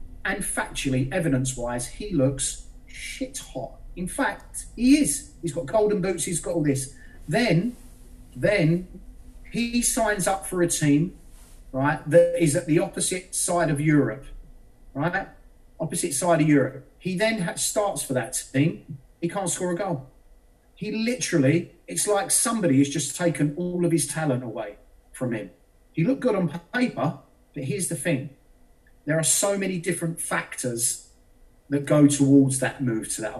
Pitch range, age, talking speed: 125-170 Hz, 40-59, 160 wpm